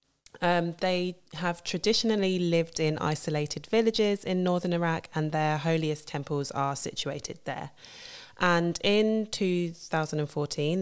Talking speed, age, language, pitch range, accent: 115 wpm, 20-39, English, 145-170 Hz, British